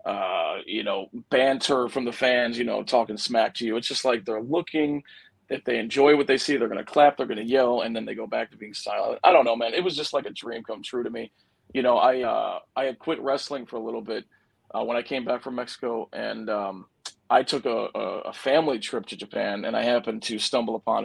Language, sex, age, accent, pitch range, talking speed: English, male, 40-59, American, 115-140 Hz, 255 wpm